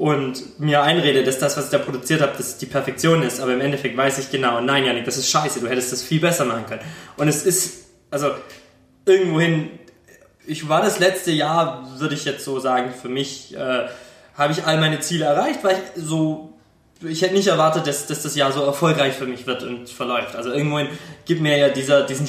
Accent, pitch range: German, 135-165 Hz